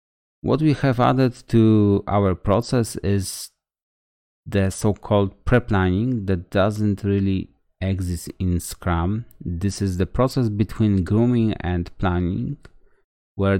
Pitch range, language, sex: 90-110 Hz, English, male